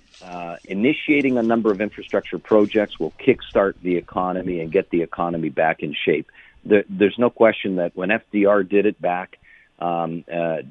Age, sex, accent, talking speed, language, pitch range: 50-69, male, American, 170 wpm, English, 95-120 Hz